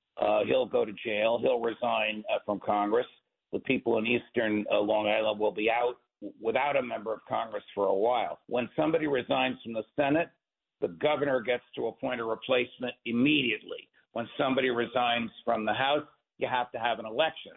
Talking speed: 185 wpm